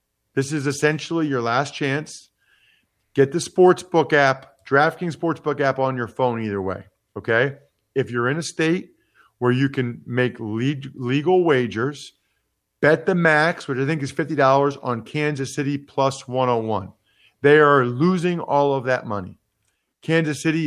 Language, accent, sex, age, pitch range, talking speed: English, American, male, 40-59, 120-160 Hz, 150 wpm